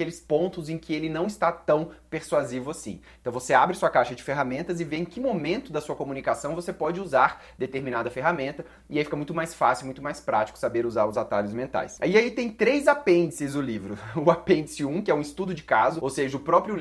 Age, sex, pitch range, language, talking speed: 20-39, male, 145-190 Hz, Portuguese, 230 wpm